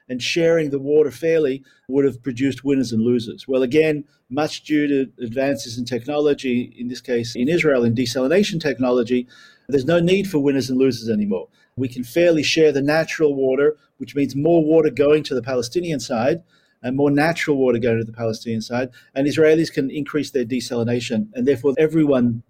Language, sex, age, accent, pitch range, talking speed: English, male, 50-69, Australian, 125-155 Hz, 185 wpm